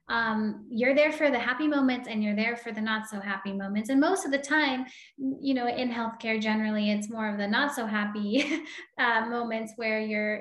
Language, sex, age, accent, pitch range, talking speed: English, female, 10-29, American, 215-255 Hz, 215 wpm